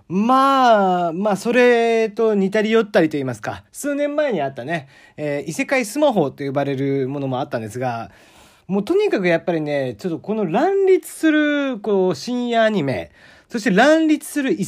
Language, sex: Japanese, male